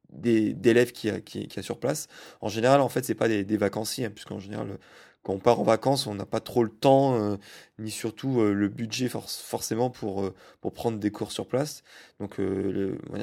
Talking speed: 230 wpm